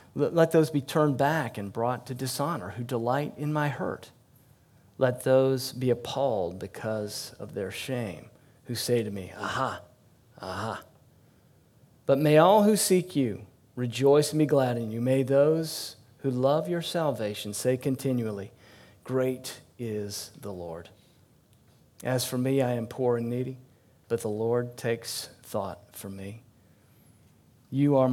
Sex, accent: male, American